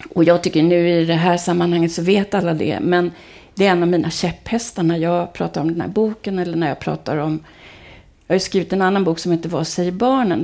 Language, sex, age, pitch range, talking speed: Swedish, female, 40-59, 170-215 Hz, 240 wpm